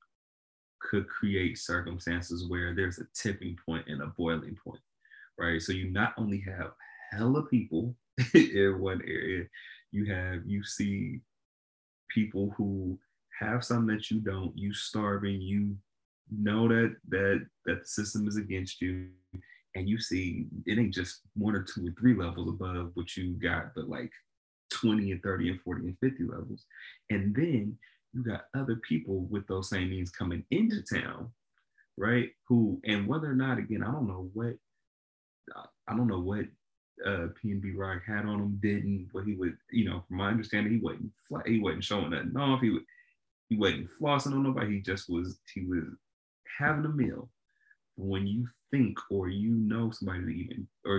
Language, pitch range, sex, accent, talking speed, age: English, 90-115 Hz, male, American, 175 wpm, 30-49